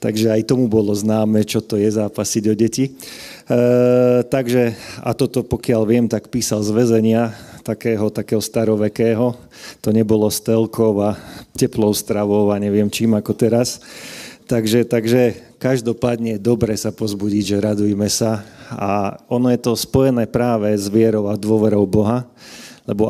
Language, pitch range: Slovak, 105-120 Hz